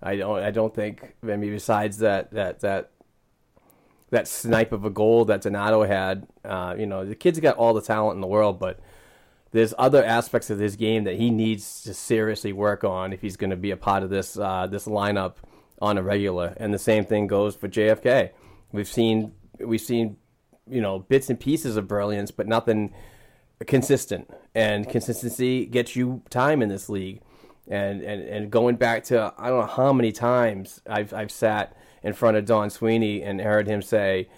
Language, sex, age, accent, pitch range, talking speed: English, male, 30-49, American, 105-120 Hz, 200 wpm